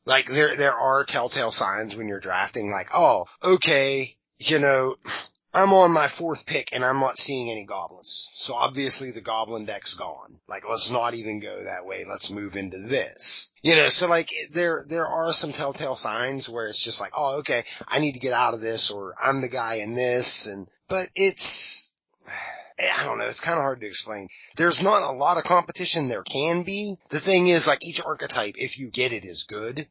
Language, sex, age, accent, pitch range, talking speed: English, male, 30-49, American, 115-160 Hz, 210 wpm